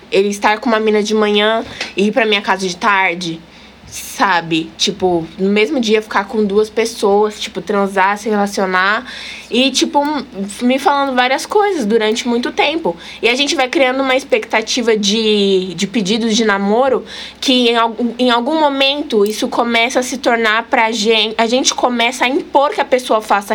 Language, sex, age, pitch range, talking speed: Portuguese, female, 20-39, 205-255 Hz, 175 wpm